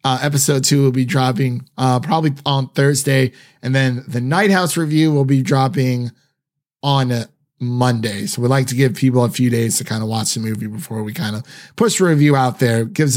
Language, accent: English, American